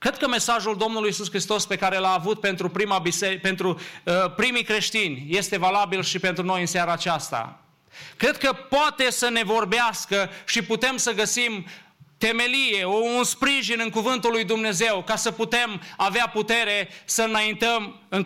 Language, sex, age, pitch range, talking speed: English, male, 30-49, 185-230 Hz, 165 wpm